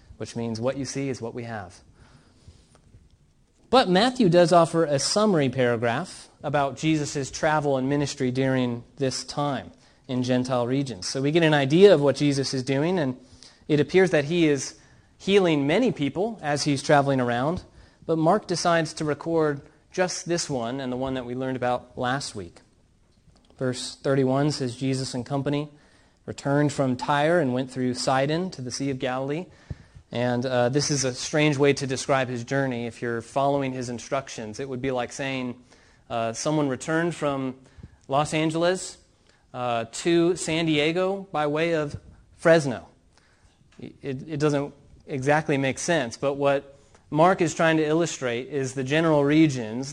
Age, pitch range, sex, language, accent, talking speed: 30-49, 125-155 Hz, male, English, American, 165 wpm